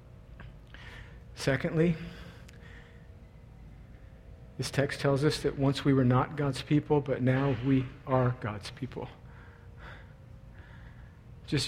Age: 50-69